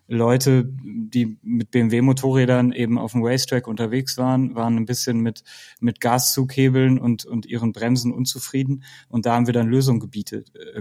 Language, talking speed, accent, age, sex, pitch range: German, 155 wpm, German, 20-39, male, 115-130 Hz